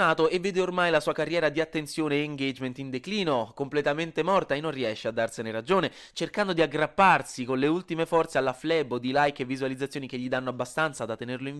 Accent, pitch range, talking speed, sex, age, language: native, 125-185 Hz, 205 wpm, male, 20-39, Italian